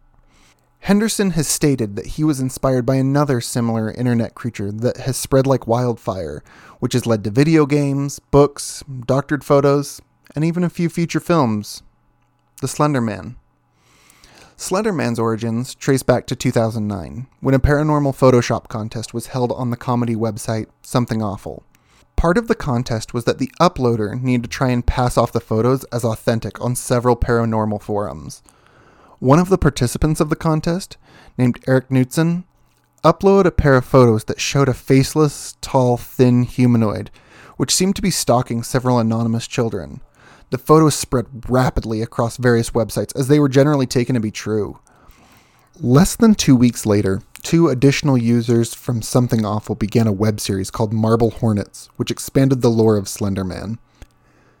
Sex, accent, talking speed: male, American, 160 wpm